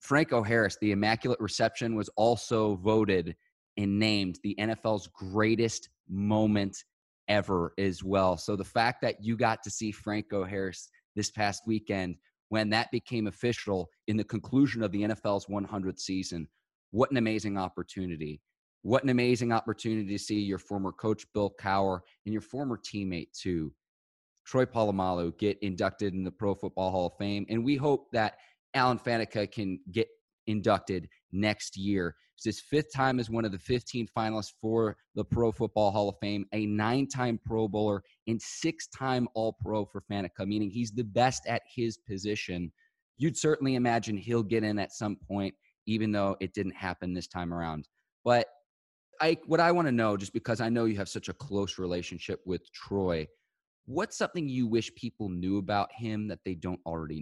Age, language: 20-39, English